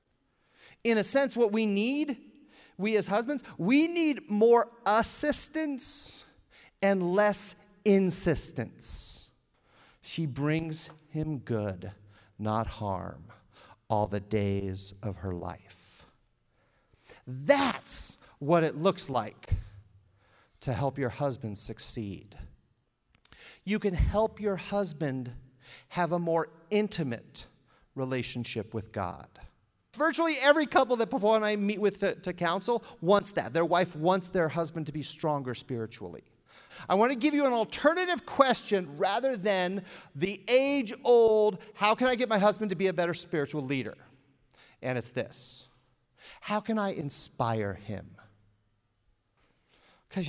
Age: 40-59